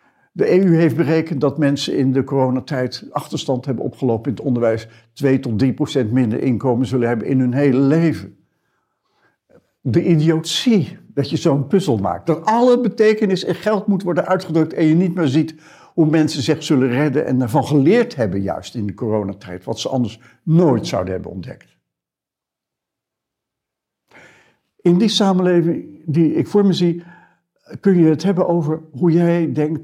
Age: 60-79